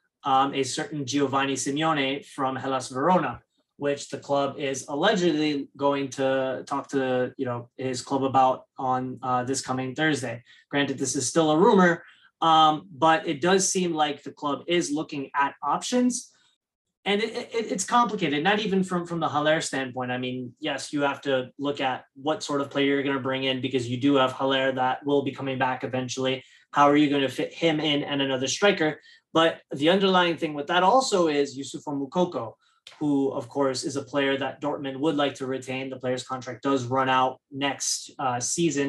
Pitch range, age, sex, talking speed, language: 135-155 Hz, 20-39, male, 195 wpm, English